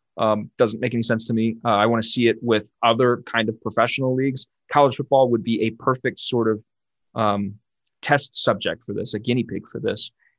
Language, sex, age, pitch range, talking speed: English, male, 20-39, 115-135 Hz, 215 wpm